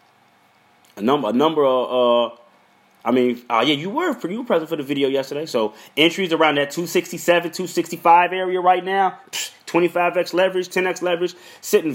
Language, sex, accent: English, male, American